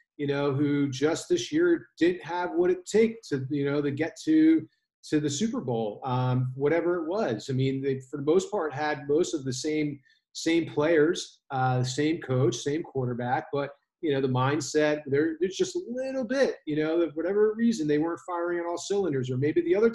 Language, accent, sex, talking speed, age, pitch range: English, American, male, 215 wpm, 40-59, 130-170 Hz